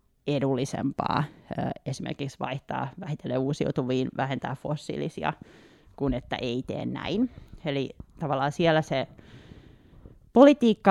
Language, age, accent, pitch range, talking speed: Finnish, 30-49, native, 130-160 Hz, 95 wpm